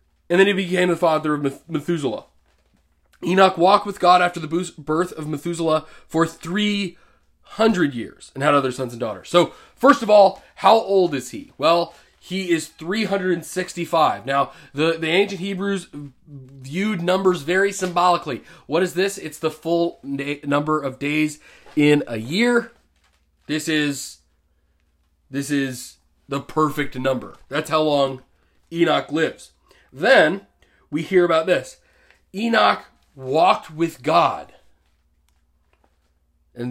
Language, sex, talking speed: English, male, 130 wpm